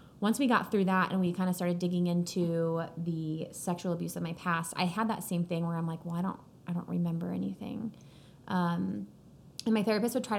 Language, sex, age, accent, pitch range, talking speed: English, female, 20-39, American, 170-195 Hz, 225 wpm